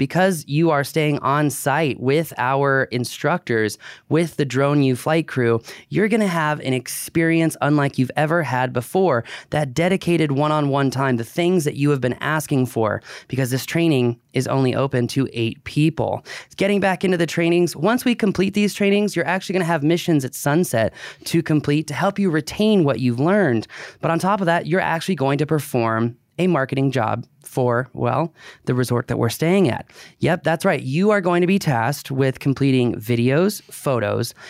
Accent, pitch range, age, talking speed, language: American, 130-175 Hz, 20-39, 185 wpm, English